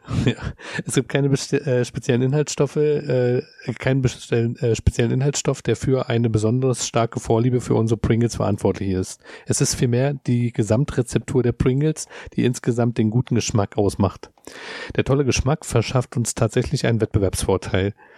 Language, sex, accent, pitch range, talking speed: German, male, German, 110-130 Hz, 135 wpm